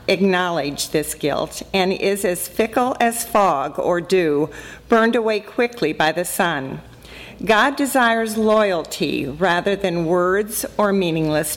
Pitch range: 175-225 Hz